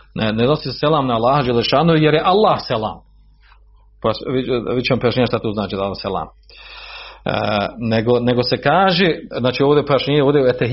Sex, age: male, 40-59